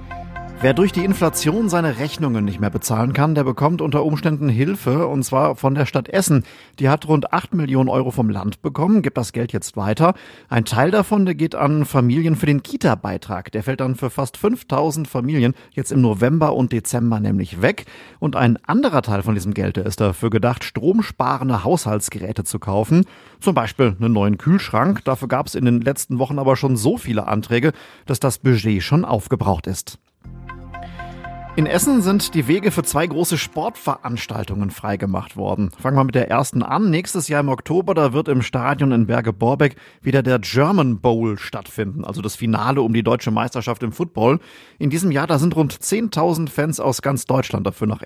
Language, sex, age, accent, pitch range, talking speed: German, male, 40-59, German, 110-155 Hz, 185 wpm